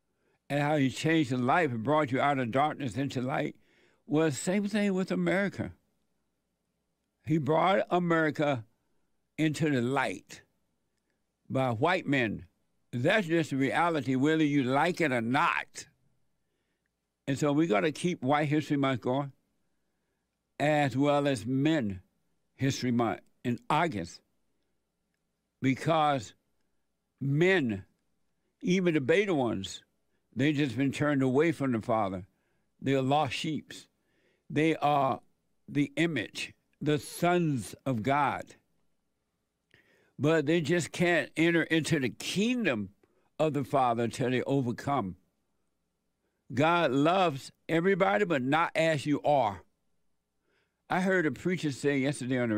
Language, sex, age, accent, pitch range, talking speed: English, male, 60-79, American, 125-160 Hz, 130 wpm